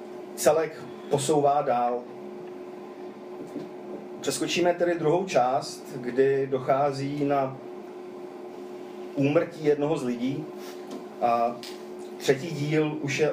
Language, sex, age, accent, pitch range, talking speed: Czech, male, 40-59, native, 125-165 Hz, 85 wpm